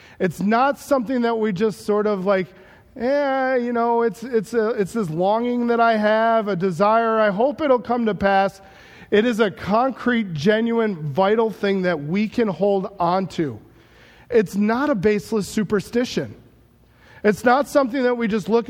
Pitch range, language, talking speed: 195-240 Hz, English, 170 wpm